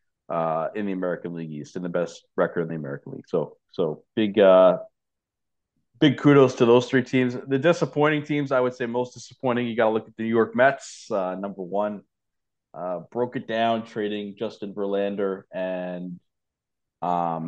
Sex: male